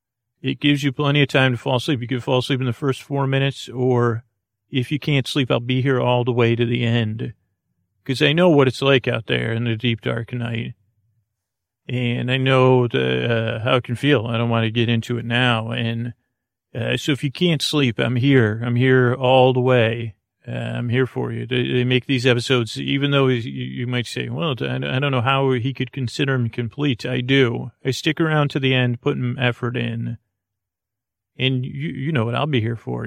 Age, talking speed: 40-59, 220 wpm